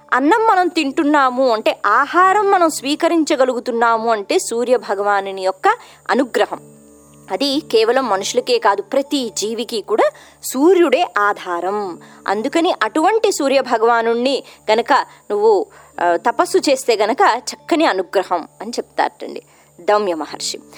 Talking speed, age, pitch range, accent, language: 100 wpm, 20-39, 230-330 Hz, native, Telugu